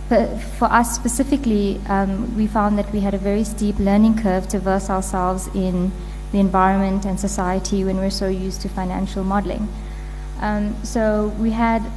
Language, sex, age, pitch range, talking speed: English, female, 20-39, 190-220 Hz, 165 wpm